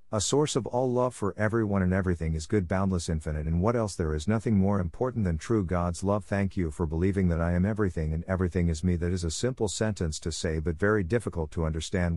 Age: 50-69